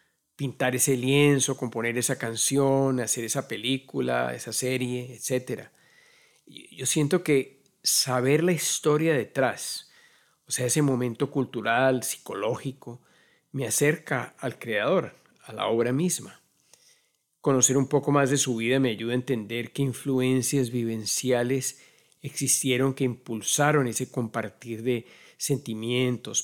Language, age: Spanish, 50-69